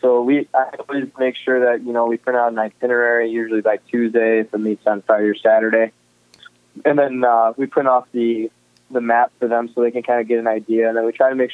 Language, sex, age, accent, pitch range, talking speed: English, male, 20-39, American, 110-125 Hz, 255 wpm